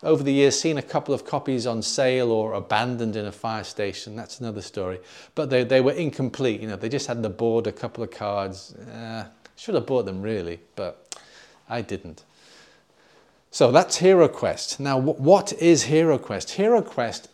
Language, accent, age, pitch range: English, British, 30-49, 110-135 Hz